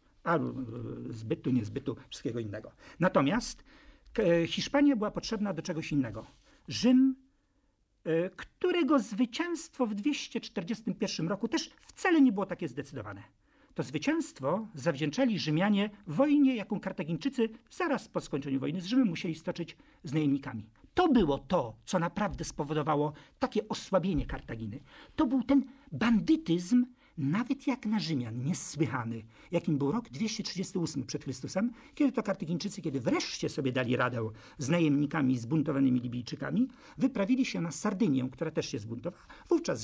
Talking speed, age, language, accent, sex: 130 wpm, 50-69, Polish, native, male